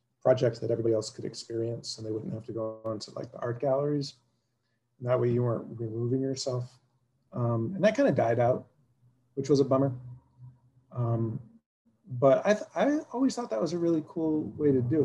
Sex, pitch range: male, 115-130 Hz